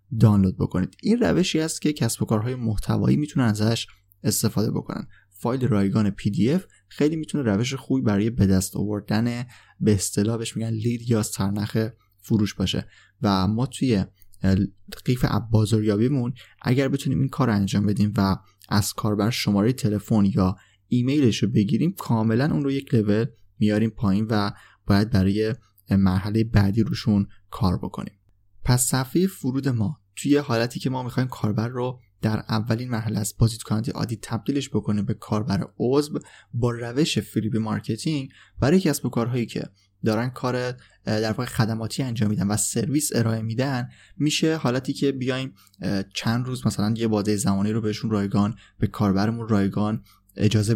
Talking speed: 150 wpm